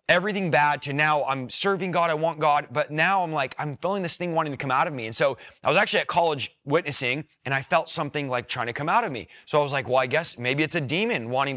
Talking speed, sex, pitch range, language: 285 wpm, male, 135-170 Hz, English